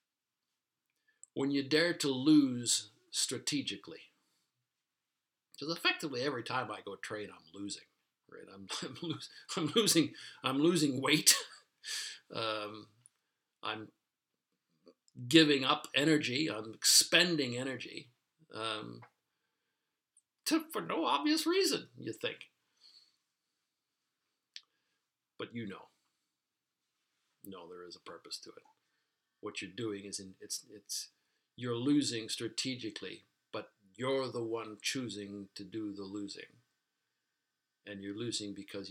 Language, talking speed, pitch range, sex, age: English, 115 wpm, 100-150 Hz, male, 60-79